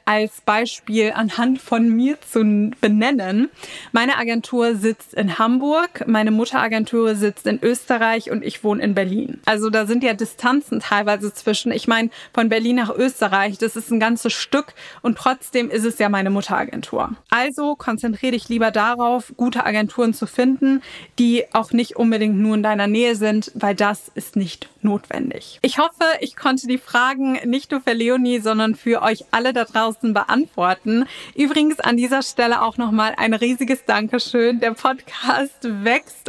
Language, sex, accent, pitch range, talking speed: German, female, German, 220-255 Hz, 165 wpm